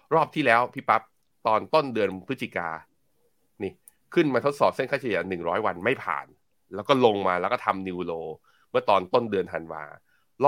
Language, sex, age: Thai, male, 20-39